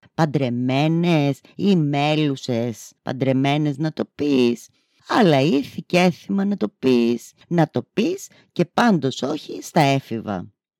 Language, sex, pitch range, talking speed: Greek, female, 120-170 Hz, 115 wpm